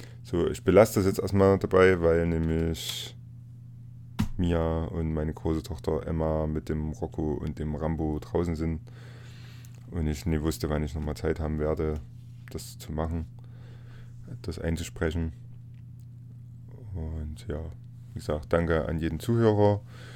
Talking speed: 135 wpm